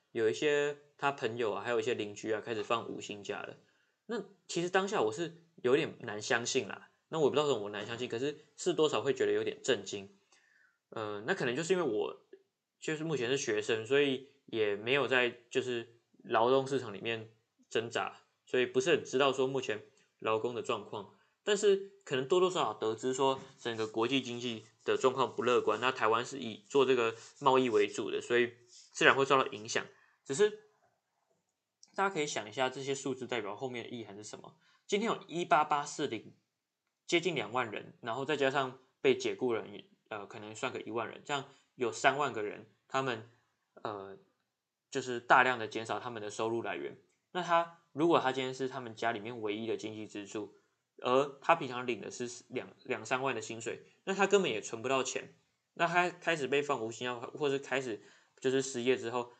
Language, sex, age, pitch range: Chinese, male, 20-39, 120-190 Hz